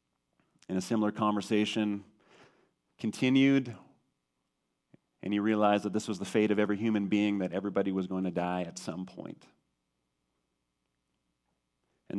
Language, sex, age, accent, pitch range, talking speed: English, male, 30-49, American, 90-115 Hz, 135 wpm